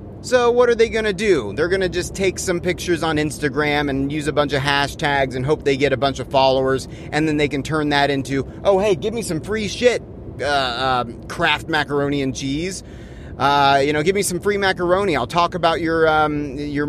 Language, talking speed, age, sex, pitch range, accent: English, 225 wpm, 30-49, male, 130-170 Hz, American